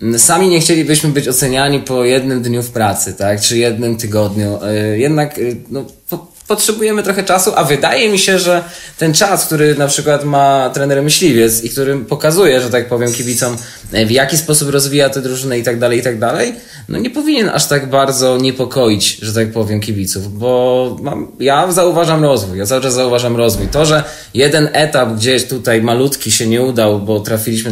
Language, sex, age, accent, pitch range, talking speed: Polish, male, 20-39, native, 115-150 Hz, 180 wpm